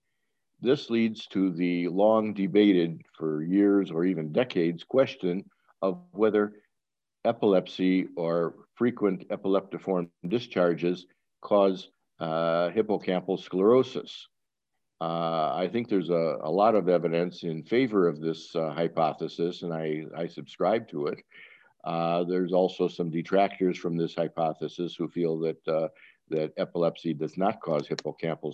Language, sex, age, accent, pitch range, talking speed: English, male, 50-69, American, 85-105 Hz, 130 wpm